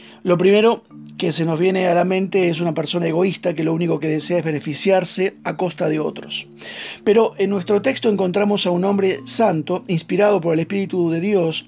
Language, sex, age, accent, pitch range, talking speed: Spanish, male, 40-59, Argentinian, 165-195 Hz, 200 wpm